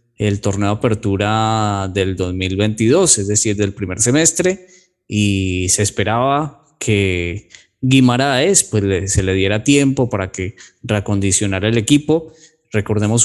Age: 20-39